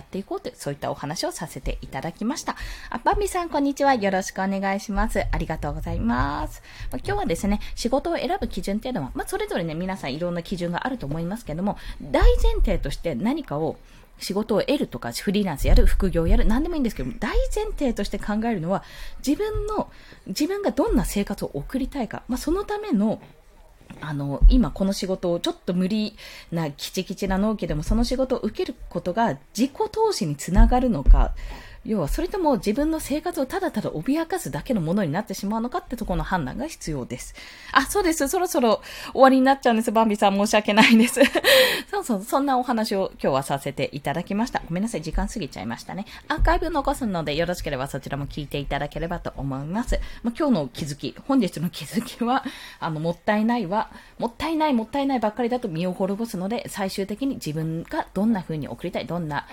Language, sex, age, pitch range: Japanese, female, 20-39, 170-260 Hz